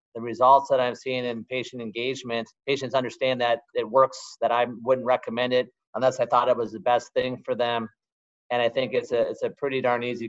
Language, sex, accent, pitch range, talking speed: English, male, American, 130-160 Hz, 220 wpm